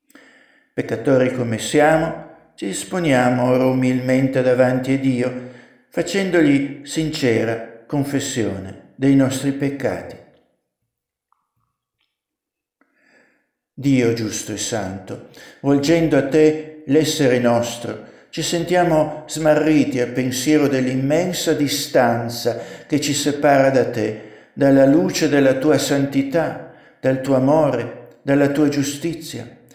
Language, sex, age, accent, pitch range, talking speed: Italian, male, 60-79, native, 125-155 Hz, 95 wpm